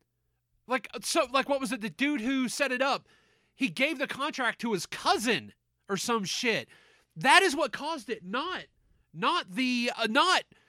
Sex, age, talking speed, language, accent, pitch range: male, 30-49, 180 wpm, English, American, 185-270 Hz